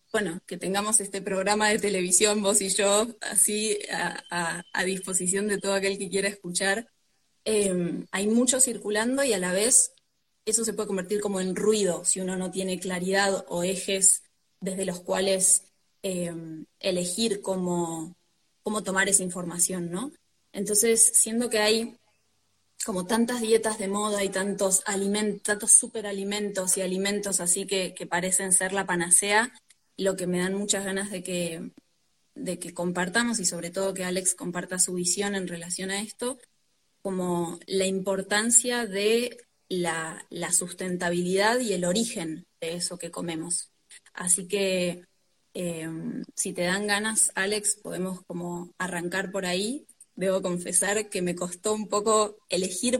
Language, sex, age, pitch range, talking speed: Spanish, female, 20-39, 180-210 Hz, 150 wpm